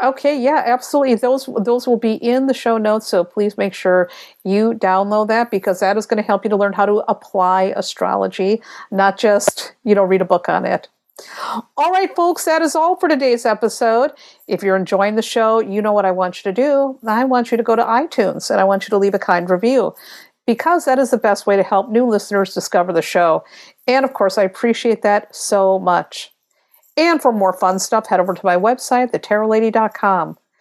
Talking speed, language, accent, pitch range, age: 215 wpm, English, American, 195-245 Hz, 50-69